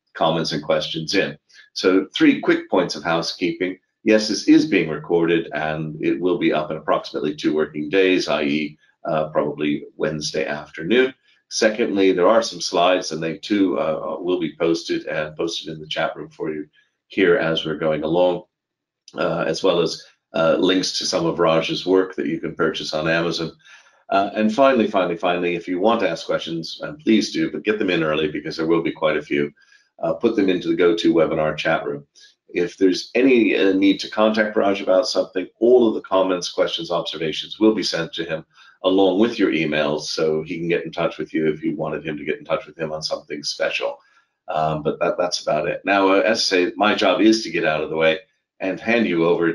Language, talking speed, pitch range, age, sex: English, 210 wpm, 80-110 Hz, 40-59, male